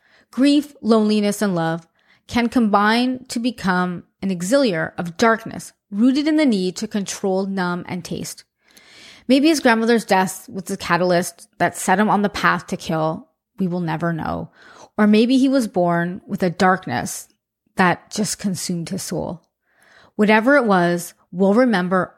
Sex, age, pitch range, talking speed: female, 30-49, 175-230 Hz, 155 wpm